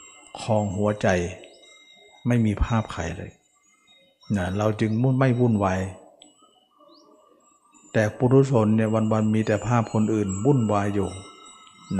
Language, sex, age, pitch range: Thai, male, 60-79, 105-120 Hz